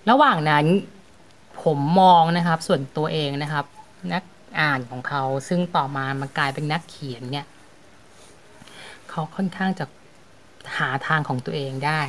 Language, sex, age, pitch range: Thai, female, 20-39, 145-185 Hz